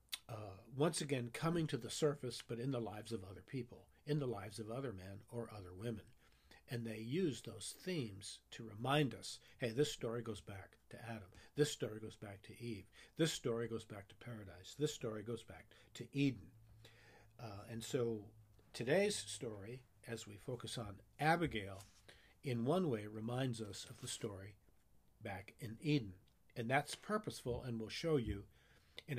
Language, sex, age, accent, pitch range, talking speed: English, male, 50-69, American, 105-140 Hz, 175 wpm